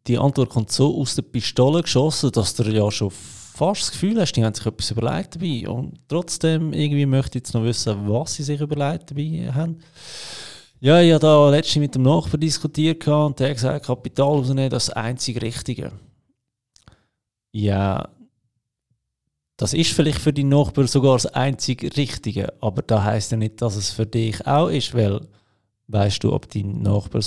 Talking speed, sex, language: 180 wpm, male, German